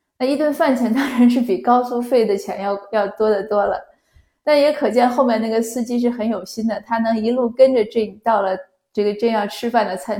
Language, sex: Chinese, female